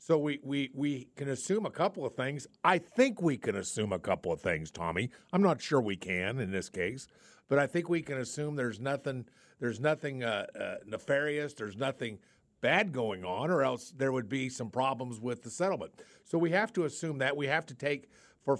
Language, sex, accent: English, male, American